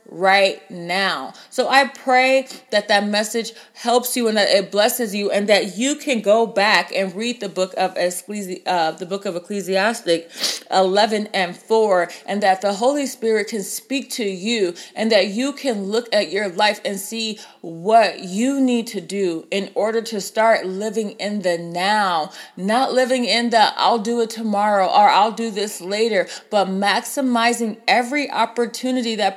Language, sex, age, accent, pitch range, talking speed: English, female, 30-49, American, 190-230 Hz, 165 wpm